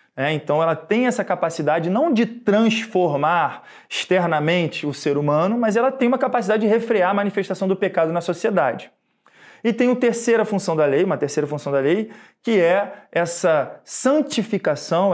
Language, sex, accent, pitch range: Portuguese, male, Brazilian, 160-215 Hz